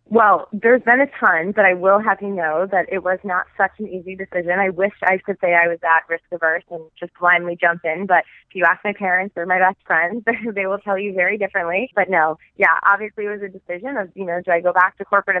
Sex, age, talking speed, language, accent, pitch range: female, 20-39, 260 wpm, English, American, 165-200 Hz